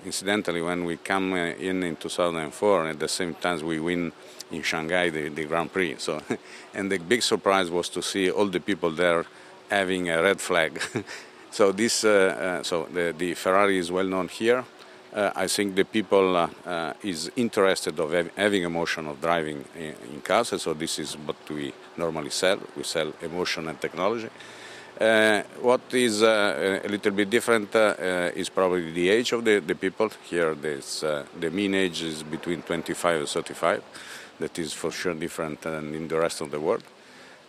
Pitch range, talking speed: 80-100 Hz, 185 wpm